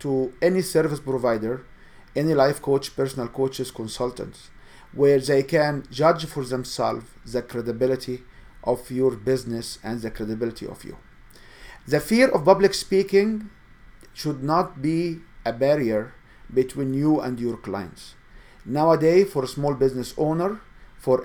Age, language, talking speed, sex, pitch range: 50-69, English, 135 wpm, male, 120-160 Hz